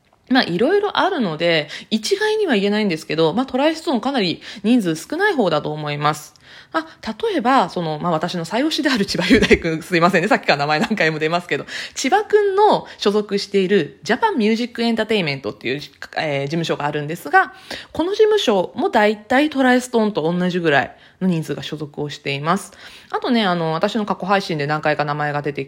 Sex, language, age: female, Japanese, 20-39